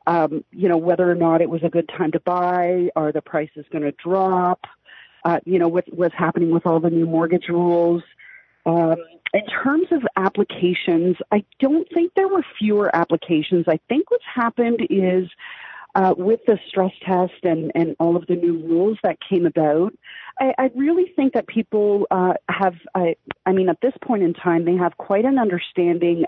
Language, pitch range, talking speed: English, 170-215 Hz, 190 wpm